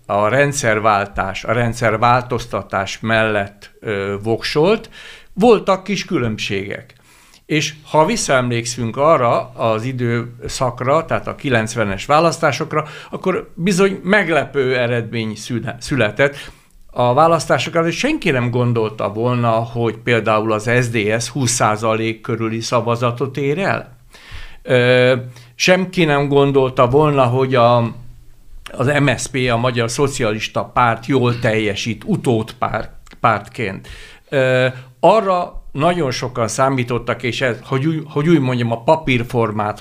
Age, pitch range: 60-79, 115-145 Hz